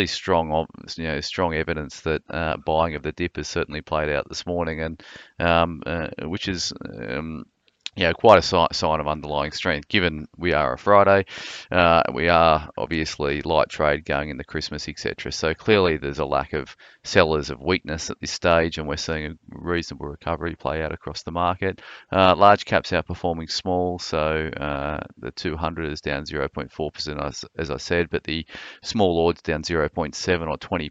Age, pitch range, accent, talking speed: 30-49, 75-85 Hz, Australian, 180 wpm